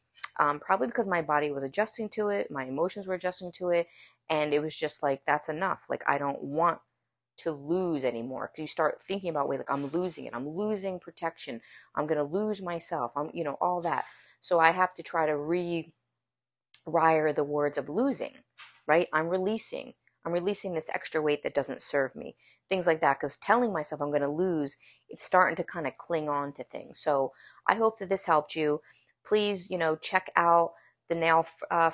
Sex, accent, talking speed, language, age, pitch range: female, American, 205 wpm, English, 30-49, 155-185 Hz